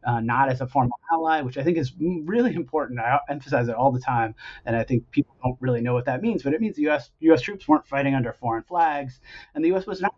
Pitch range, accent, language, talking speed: 125-160 Hz, American, English, 265 wpm